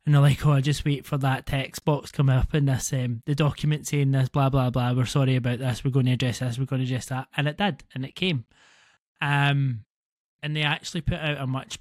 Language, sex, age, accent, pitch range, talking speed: English, male, 20-39, British, 130-145 Hz, 260 wpm